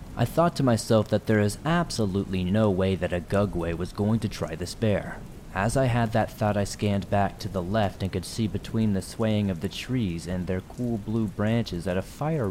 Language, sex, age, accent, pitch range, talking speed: English, male, 20-39, American, 90-115 Hz, 225 wpm